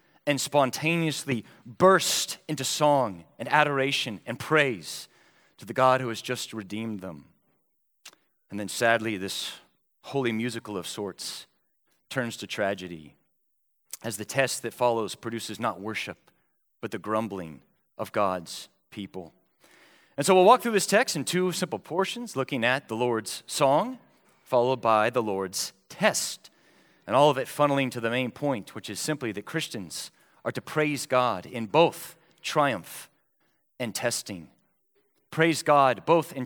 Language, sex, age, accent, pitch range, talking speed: English, male, 30-49, American, 110-155 Hz, 150 wpm